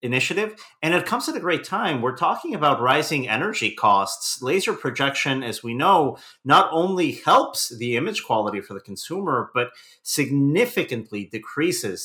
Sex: male